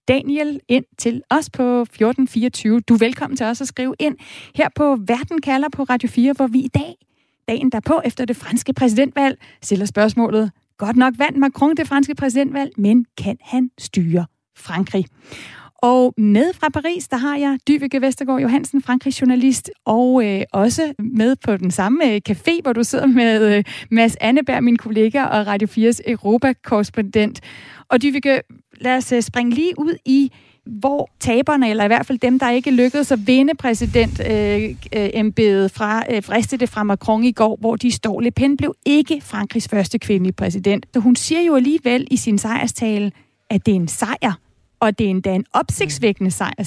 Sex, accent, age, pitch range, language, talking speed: female, native, 30-49, 215-270 Hz, Danish, 185 wpm